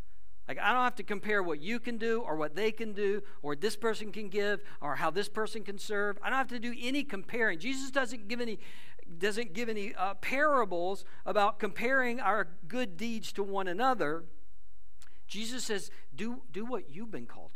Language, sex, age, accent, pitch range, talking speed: English, male, 60-79, American, 175-225 Hz, 200 wpm